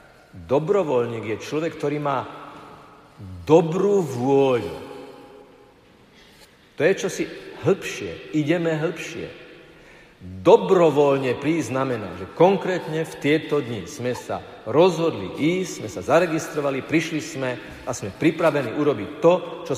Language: Slovak